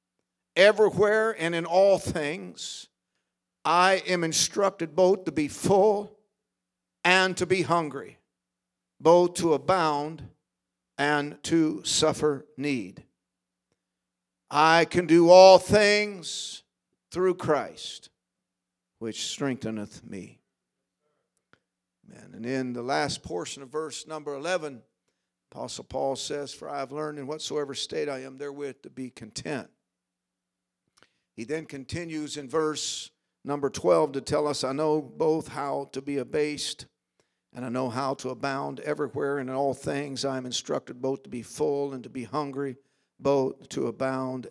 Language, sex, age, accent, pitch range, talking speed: English, male, 50-69, American, 130-165 Hz, 135 wpm